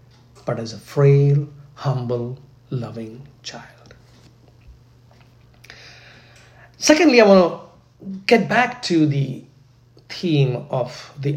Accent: Indian